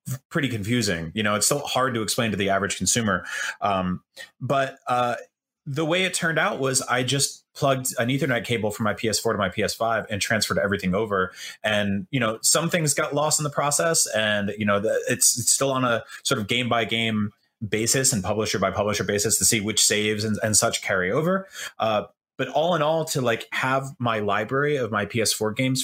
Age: 30-49